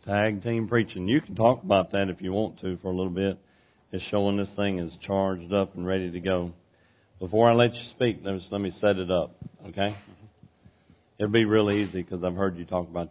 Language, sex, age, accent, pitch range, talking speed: English, male, 40-59, American, 100-120 Hz, 220 wpm